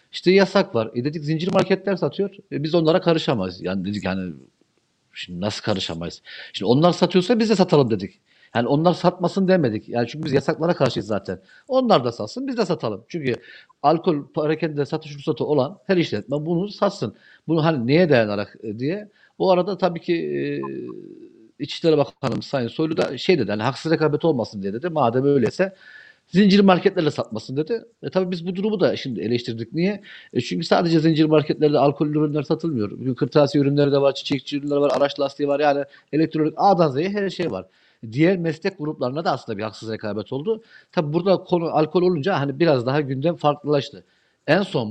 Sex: male